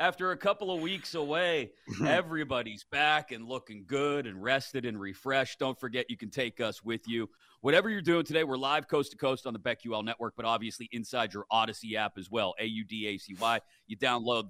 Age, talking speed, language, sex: 40-59, 185 wpm, English, male